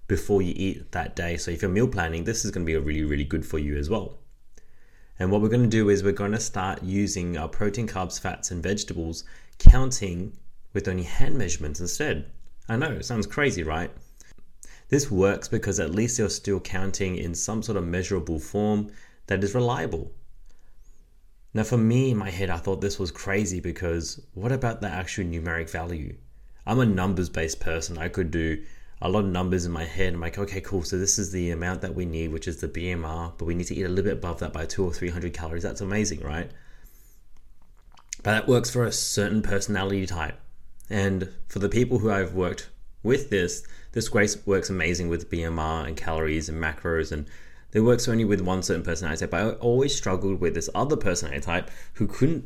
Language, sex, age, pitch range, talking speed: English, male, 30-49, 80-100 Hz, 210 wpm